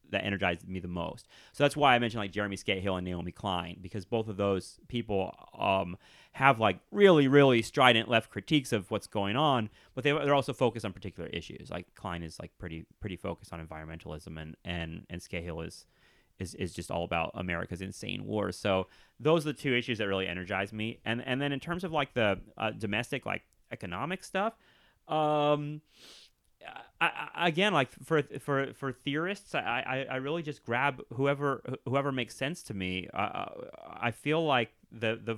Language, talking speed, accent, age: English, 195 wpm, American, 30-49